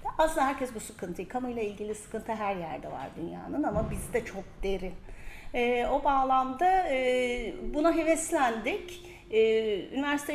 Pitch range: 210-310 Hz